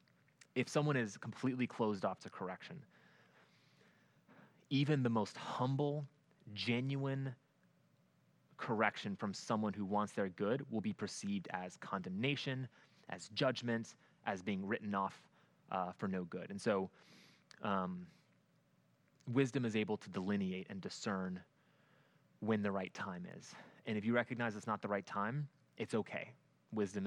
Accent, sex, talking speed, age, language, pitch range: American, male, 135 wpm, 20-39, English, 100-135 Hz